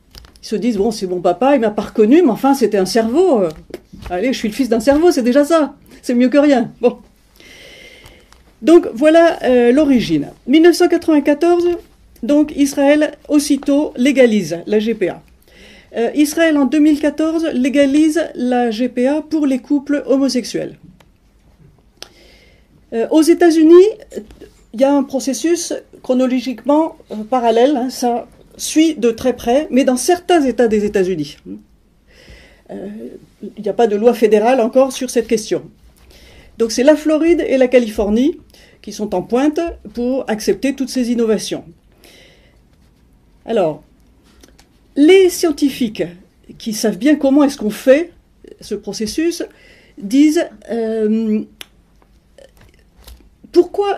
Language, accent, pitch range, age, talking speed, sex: French, French, 230-305 Hz, 50-69, 125 wpm, female